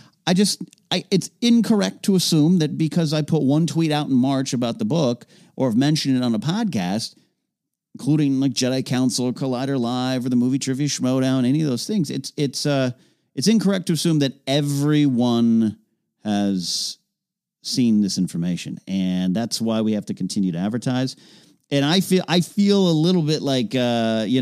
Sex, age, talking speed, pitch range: male, 40-59, 185 wpm, 110-155 Hz